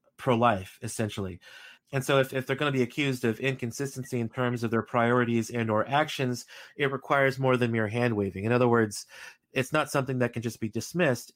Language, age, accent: English, 30-49, American